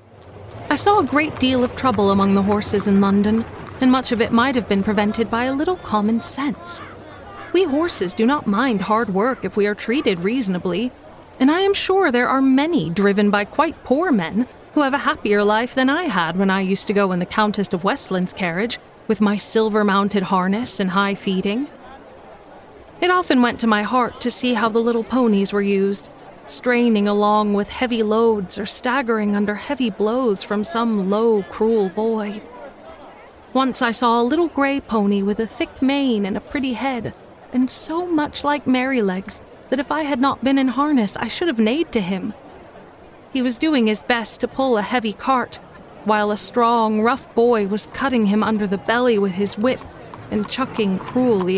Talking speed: 190 wpm